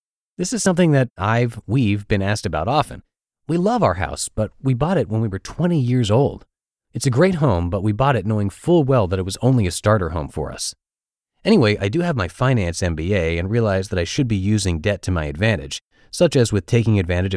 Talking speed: 230 wpm